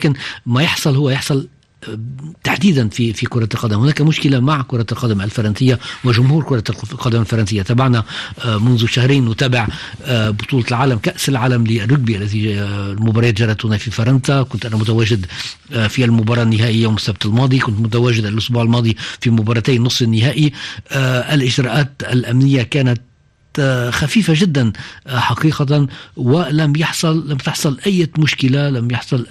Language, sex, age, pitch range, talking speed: Arabic, male, 50-69, 115-140 Hz, 135 wpm